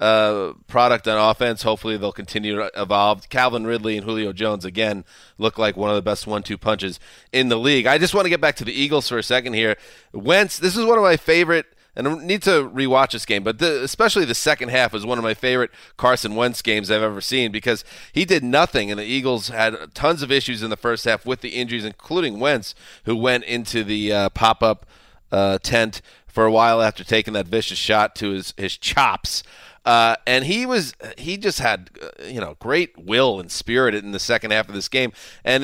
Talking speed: 220 wpm